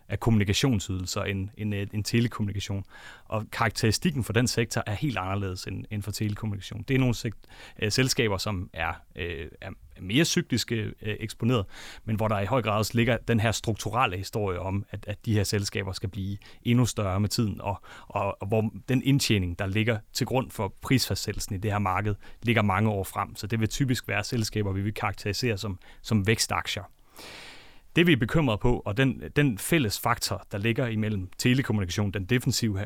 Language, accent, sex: Danish, native, male